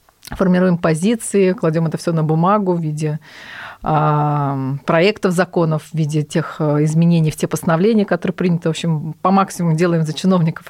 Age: 30-49